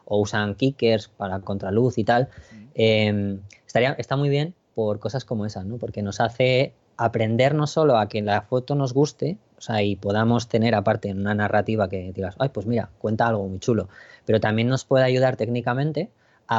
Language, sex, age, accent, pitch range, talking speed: Spanish, female, 20-39, Spanish, 100-120 Hz, 190 wpm